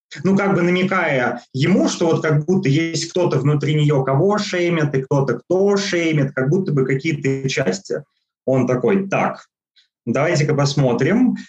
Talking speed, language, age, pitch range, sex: 150 wpm, Russian, 20-39, 120-155 Hz, male